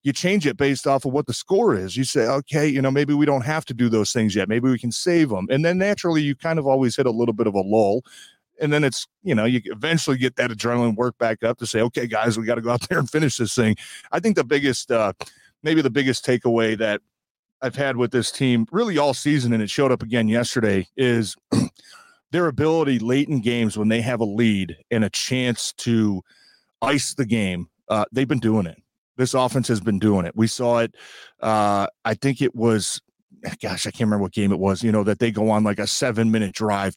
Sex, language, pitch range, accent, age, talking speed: male, English, 110-130 Hz, American, 30-49, 240 wpm